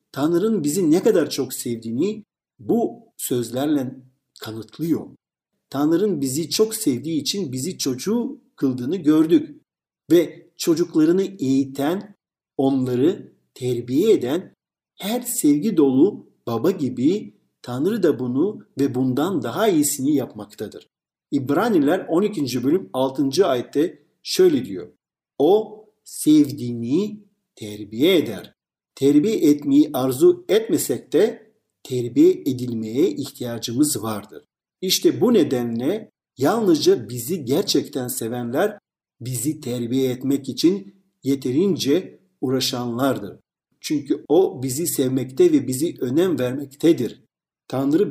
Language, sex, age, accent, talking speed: Turkish, male, 50-69, native, 100 wpm